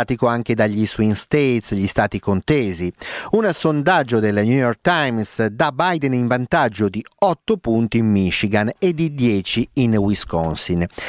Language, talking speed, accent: Italian, 145 wpm, native